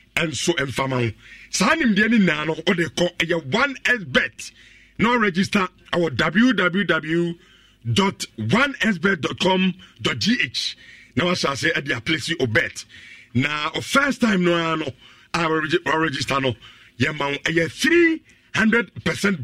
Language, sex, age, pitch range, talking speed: English, male, 50-69, 130-190 Hz, 145 wpm